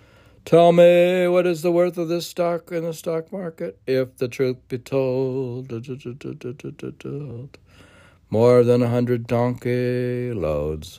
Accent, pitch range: American, 85-130 Hz